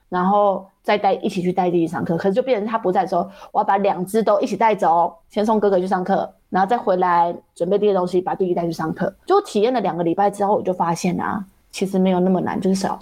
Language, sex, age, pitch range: Chinese, female, 20-39, 180-220 Hz